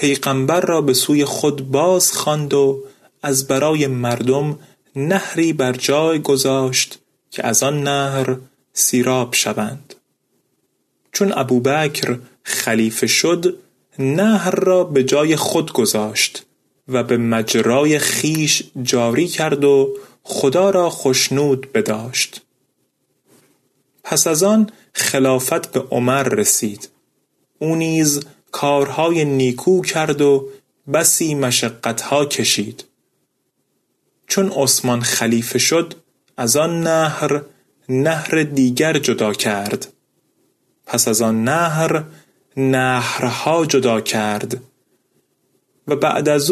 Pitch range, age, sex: 130-155 Hz, 30-49, male